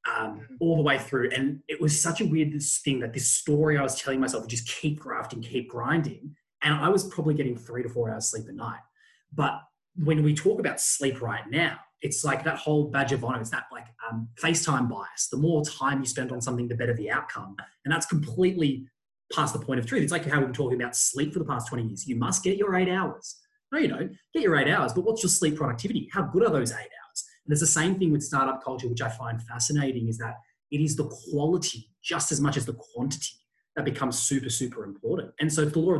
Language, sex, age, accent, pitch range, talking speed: English, male, 20-39, Australian, 125-155 Hz, 245 wpm